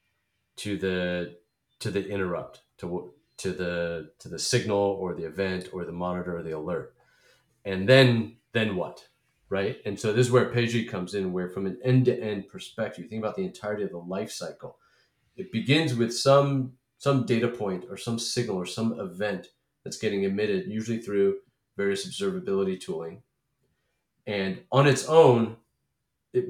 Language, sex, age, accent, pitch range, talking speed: English, male, 30-49, American, 95-125 Hz, 170 wpm